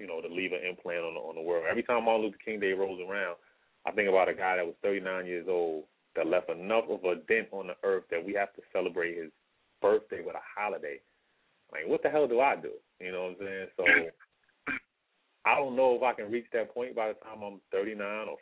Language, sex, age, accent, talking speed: English, male, 30-49, American, 250 wpm